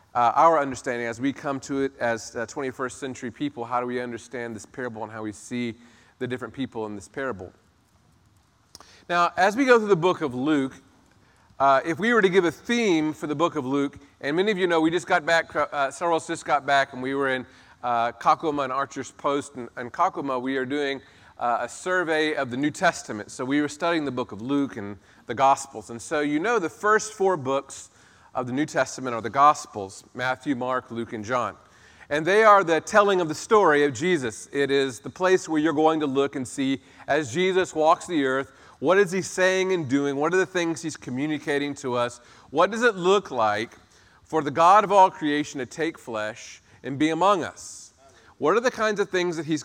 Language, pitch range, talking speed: English, 125-170 Hz, 225 wpm